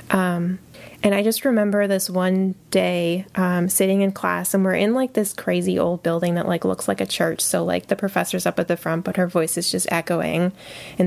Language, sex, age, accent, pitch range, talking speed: English, female, 10-29, American, 170-190 Hz, 220 wpm